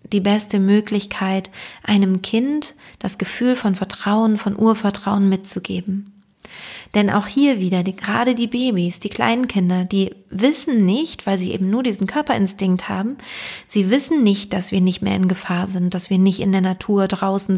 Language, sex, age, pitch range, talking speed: German, female, 30-49, 195-230 Hz, 165 wpm